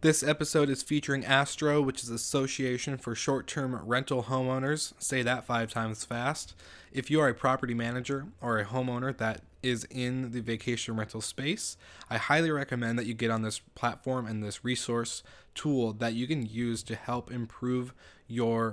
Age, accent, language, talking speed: 20-39, American, English, 175 wpm